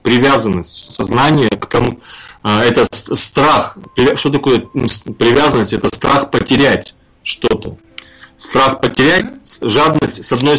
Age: 30-49